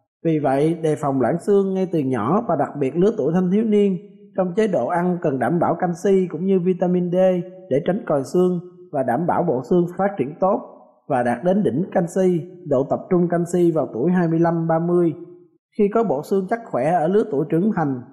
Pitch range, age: 160-195 Hz, 20-39